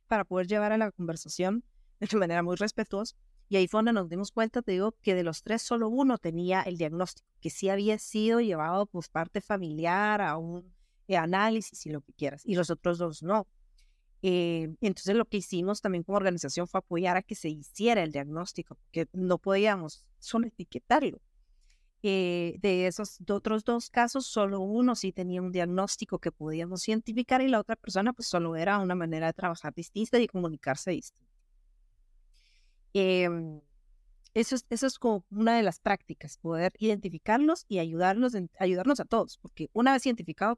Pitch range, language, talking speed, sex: 170-220 Hz, Spanish, 180 wpm, female